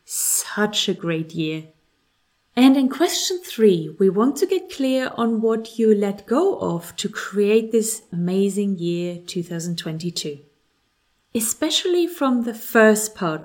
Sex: female